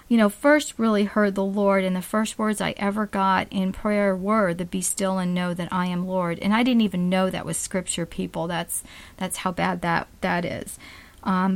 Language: English